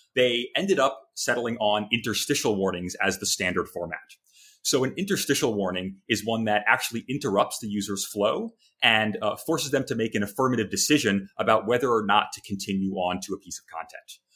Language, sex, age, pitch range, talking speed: English, male, 30-49, 100-130 Hz, 185 wpm